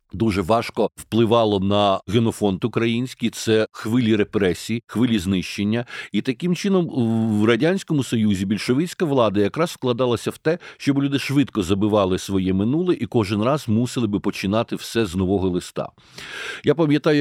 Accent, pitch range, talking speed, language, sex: native, 105-130 Hz, 145 wpm, Ukrainian, male